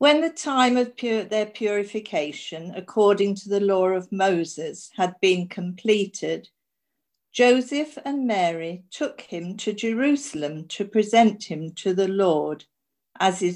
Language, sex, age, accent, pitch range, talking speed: English, female, 50-69, British, 175-240 Hz, 130 wpm